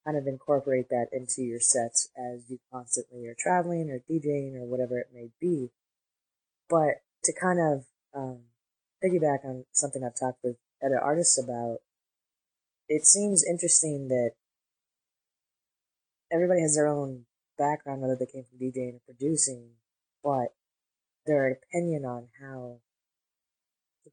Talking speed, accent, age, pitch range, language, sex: 135 wpm, American, 20-39, 125-150 Hz, English, female